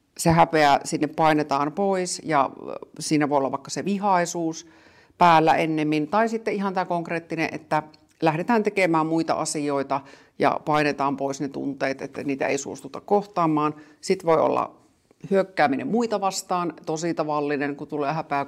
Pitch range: 140-175 Hz